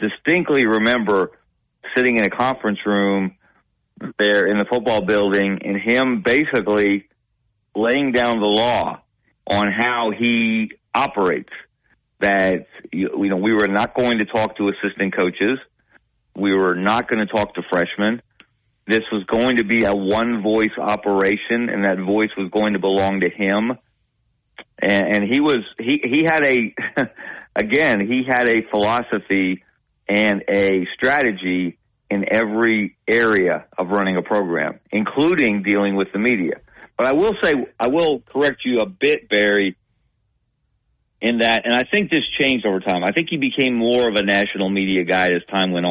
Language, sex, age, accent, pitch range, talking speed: English, male, 40-59, American, 100-120 Hz, 160 wpm